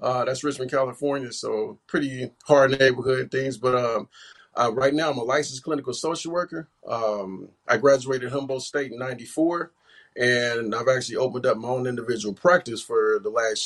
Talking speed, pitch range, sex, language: 170 wpm, 120-140 Hz, male, English